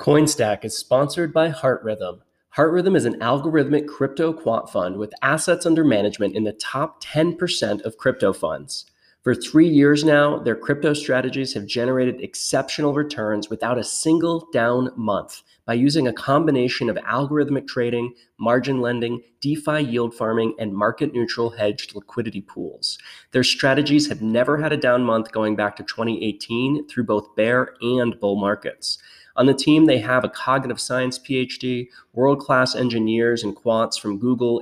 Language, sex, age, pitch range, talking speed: English, male, 20-39, 110-140 Hz, 155 wpm